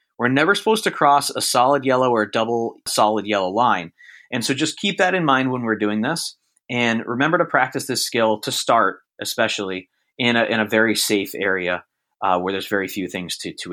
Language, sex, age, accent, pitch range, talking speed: English, male, 30-49, American, 120-145 Hz, 215 wpm